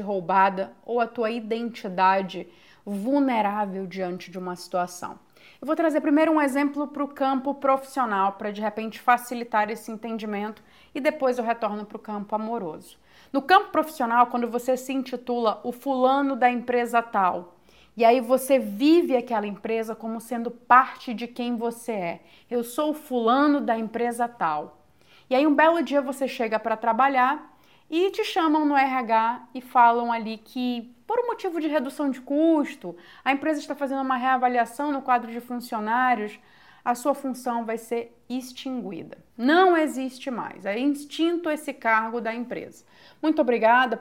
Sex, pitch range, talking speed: female, 220-270 Hz, 160 wpm